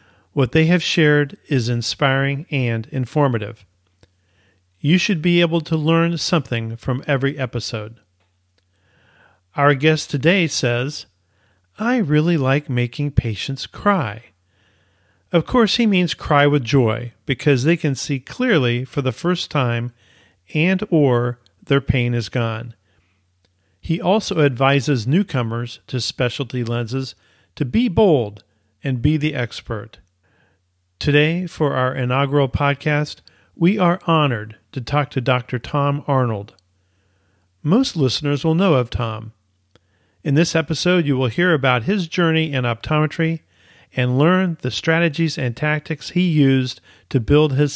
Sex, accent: male, American